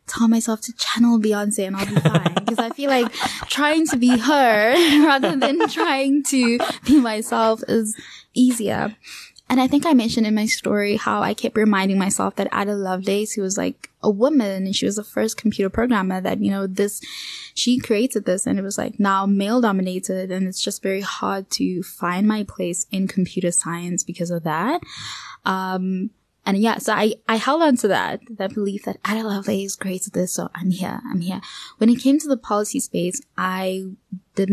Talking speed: 200 wpm